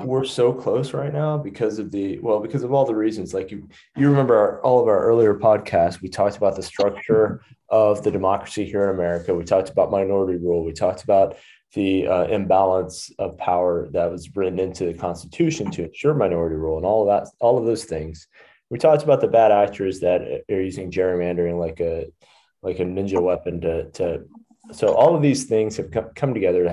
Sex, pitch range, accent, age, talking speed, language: male, 90-110 Hz, American, 20-39, 205 wpm, English